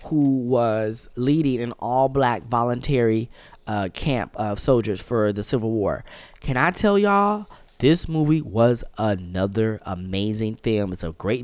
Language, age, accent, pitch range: English, 10-29, American, 115-165 Hz